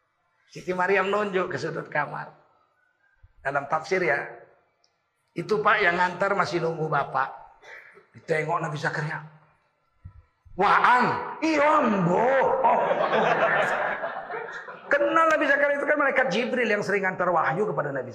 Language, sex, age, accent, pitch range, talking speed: Indonesian, male, 40-59, native, 160-260 Hz, 120 wpm